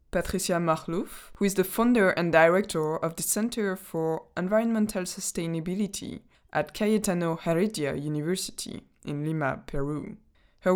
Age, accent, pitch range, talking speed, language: 20-39, French, 155-200 Hz, 125 wpm, English